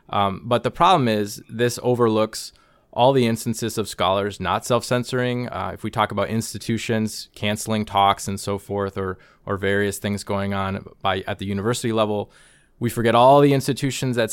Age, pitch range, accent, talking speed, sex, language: 20-39, 100-120 Hz, American, 175 wpm, male, English